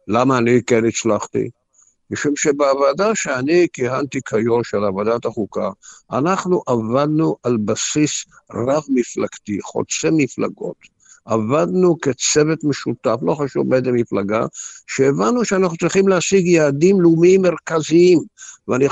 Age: 60-79